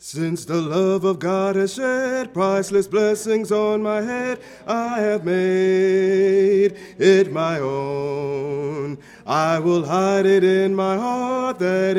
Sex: male